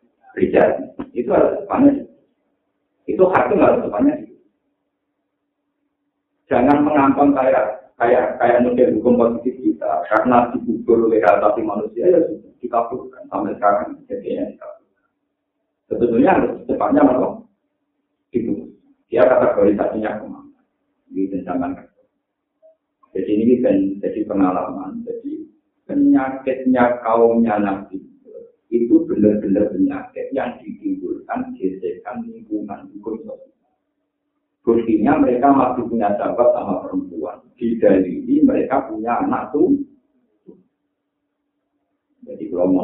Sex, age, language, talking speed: male, 50-69, Indonesian, 105 wpm